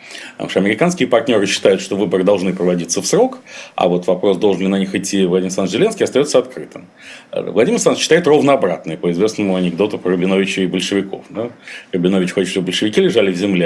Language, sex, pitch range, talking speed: Russian, male, 95-115 Hz, 190 wpm